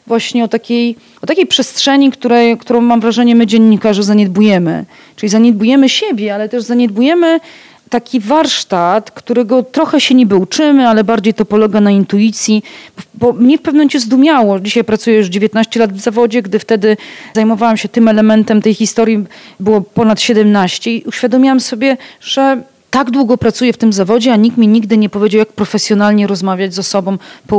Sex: female